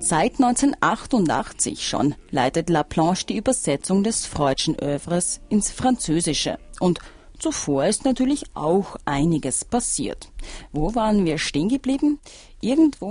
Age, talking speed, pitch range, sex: 40-59, 120 wpm, 155-230 Hz, female